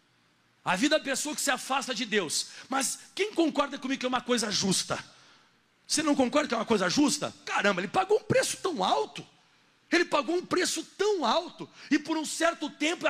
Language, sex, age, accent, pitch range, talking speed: Portuguese, male, 50-69, Brazilian, 250-330 Hz, 205 wpm